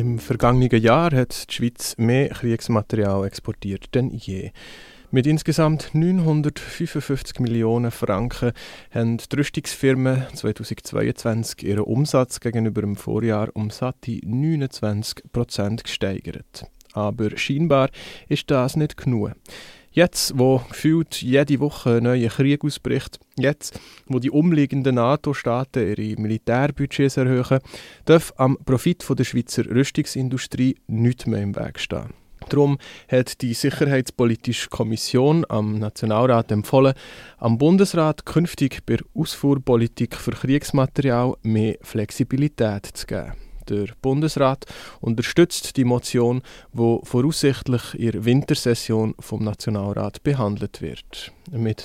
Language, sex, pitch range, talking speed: German, male, 115-140 Hz, 110 wpm